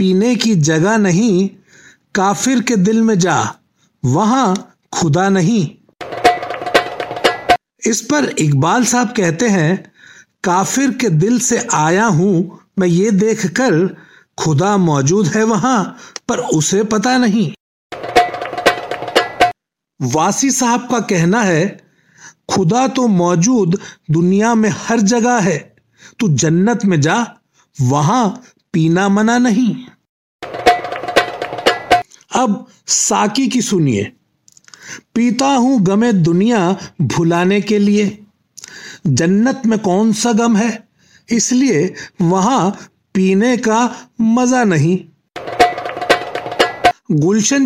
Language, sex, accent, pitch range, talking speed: Hindi, male, native, 180-235 Hz, 100 wpm